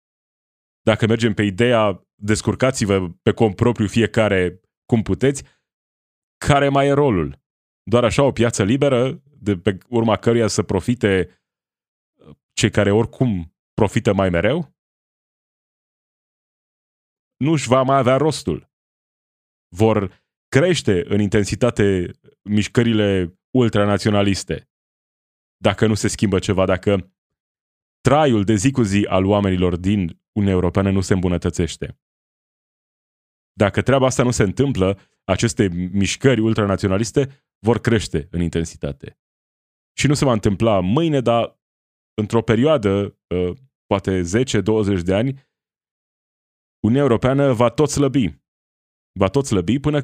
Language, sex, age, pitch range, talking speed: Romanian, male, 30-49, 95-125 Hz, 115 wpm